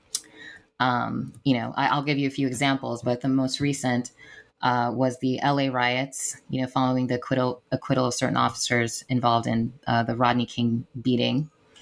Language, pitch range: English, 120-135 Hz